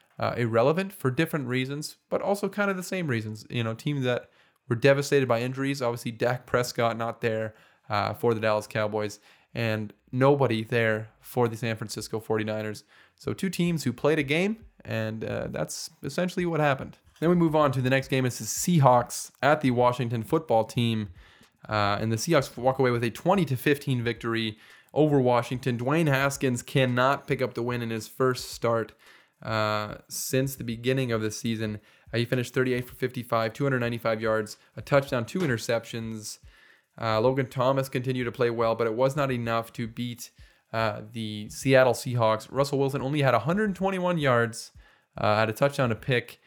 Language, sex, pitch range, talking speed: English, male, 115-135 Hz, 185 wpm